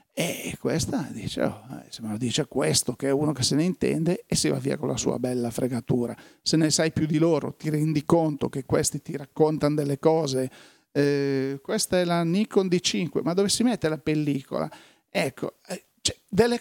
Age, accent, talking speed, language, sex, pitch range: 40-59, native, 190 wpm, Italian, male, 150-190 Hz